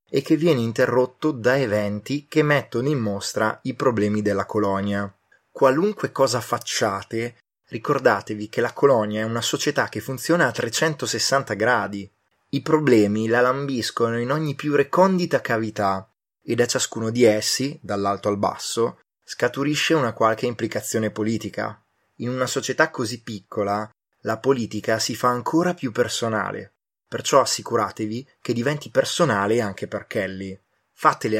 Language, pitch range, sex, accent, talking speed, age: Italian, 105-125 Hz, male, native, 140 wpm, 20-39